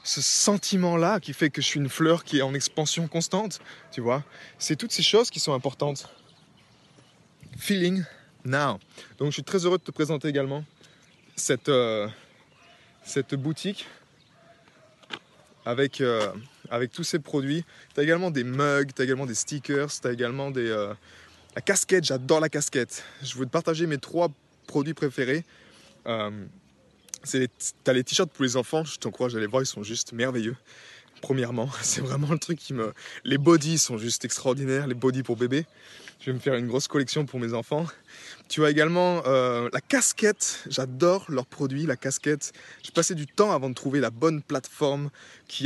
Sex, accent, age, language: male, French, 20-39, French